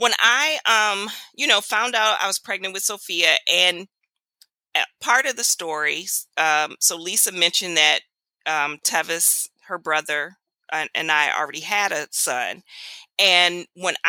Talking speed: 150 wpm